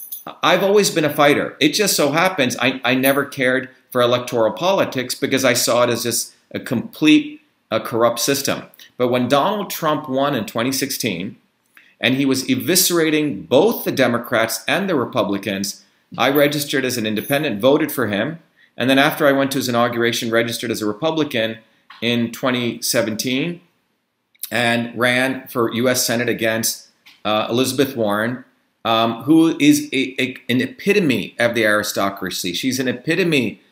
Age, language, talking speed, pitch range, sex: 40-59, English, 155 wpm, 115-140 Hz, male